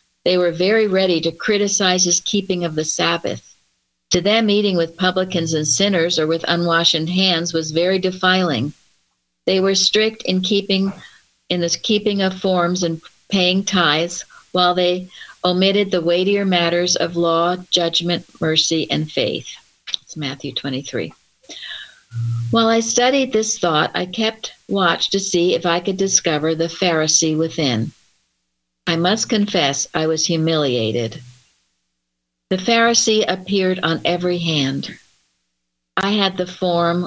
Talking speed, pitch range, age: 140 wpm, 155-185 Hz, 60-79